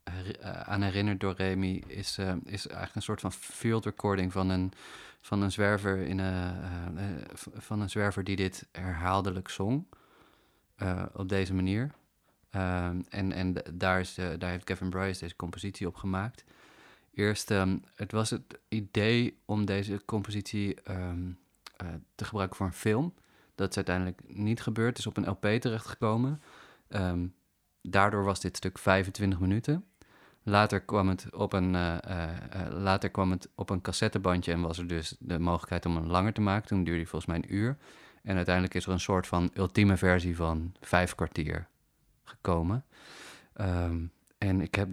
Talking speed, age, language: 170 wpm, 30-49, Dutch